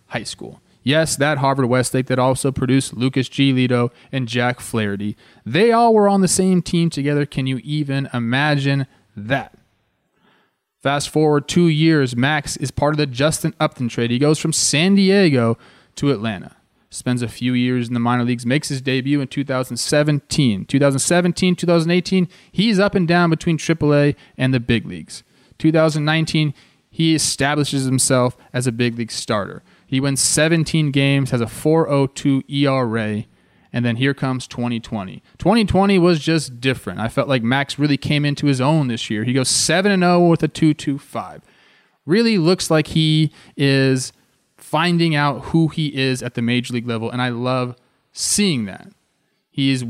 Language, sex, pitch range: English, male, 125-155 Hz